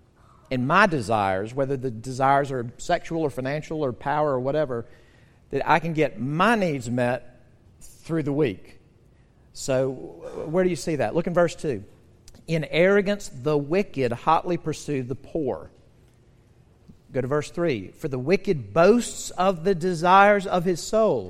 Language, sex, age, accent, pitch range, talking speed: English, male, 50-69, American, 125-180 Hz, 160 wpm